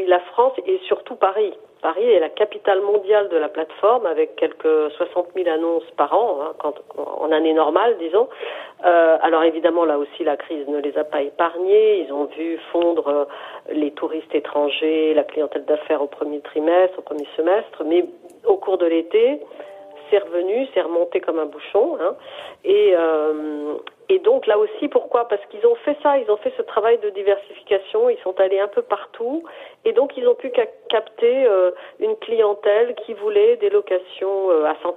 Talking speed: 185 wpm